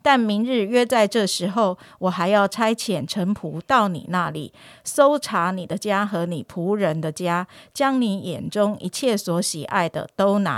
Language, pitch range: Chinese, 175-225 Hz